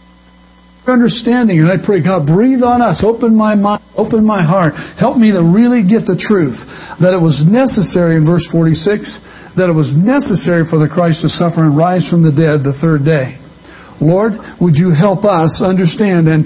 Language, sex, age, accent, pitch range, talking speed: English, male, 60-79, American, 160-225 Hz, 190 wpm